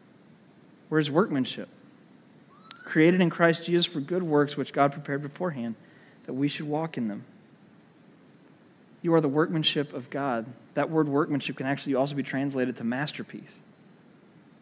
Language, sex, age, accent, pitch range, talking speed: English, male, 30-49, American, 145-185 Hz, 150 wpm